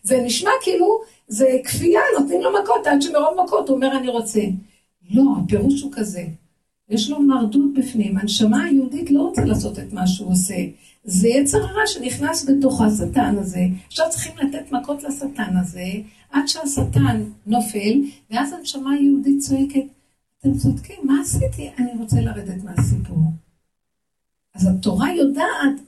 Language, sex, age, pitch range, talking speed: Hebrew, female, 50-69, 210-280 Hz, 145 wpm